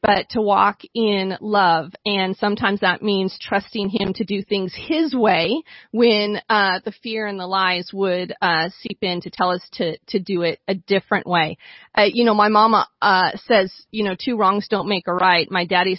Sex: female